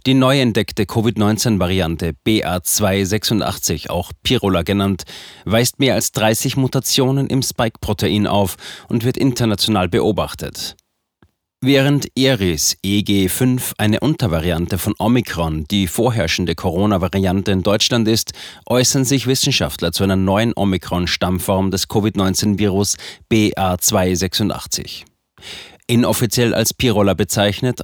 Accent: German